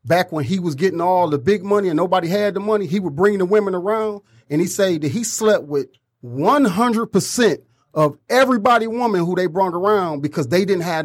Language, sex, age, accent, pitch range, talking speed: English, male, 40-59, American, 130-175 Hz, 210 wpm